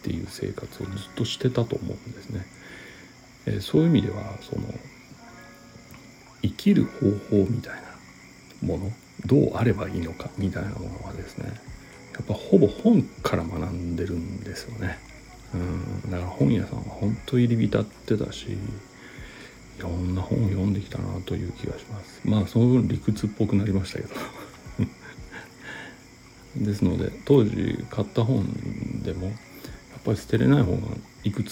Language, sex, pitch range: Japanese, male, 95-120 Hz